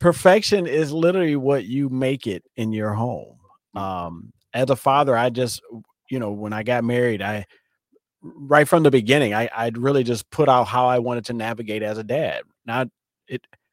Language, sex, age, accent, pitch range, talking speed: English, male, 30-49, American, 115-155 Hz, 190 wpm